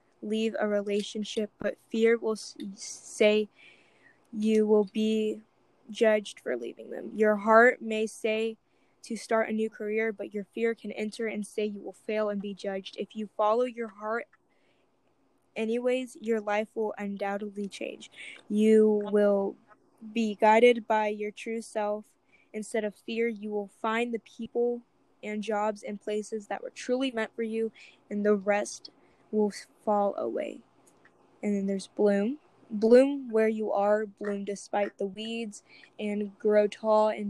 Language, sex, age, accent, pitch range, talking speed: English, female, 10-29, American, 210-225 Hz, 155 wpm